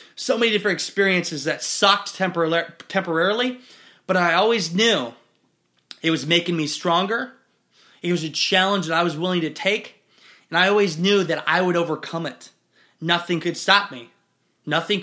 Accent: American